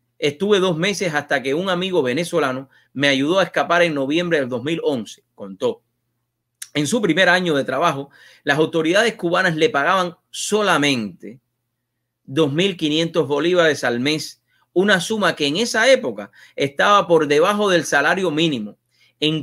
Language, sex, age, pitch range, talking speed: English, male, 30-49, 120-175 Hz, 140 wpm